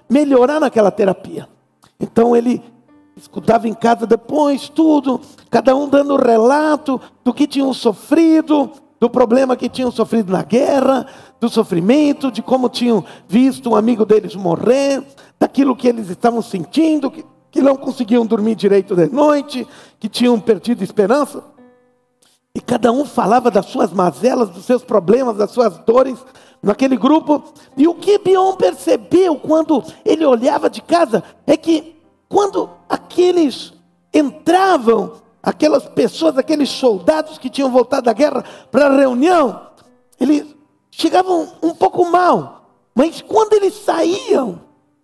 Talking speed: 135 wpm